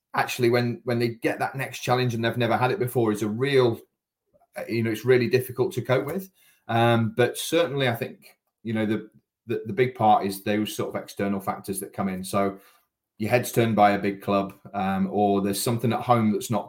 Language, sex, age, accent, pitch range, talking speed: English, male, 30-49, British, 105-125 Hz, 225 wpm